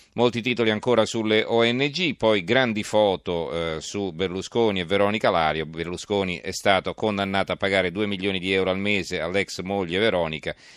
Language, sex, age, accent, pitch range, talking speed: Italian, male, 40-59, native, 90-105 Hz, 160 wpm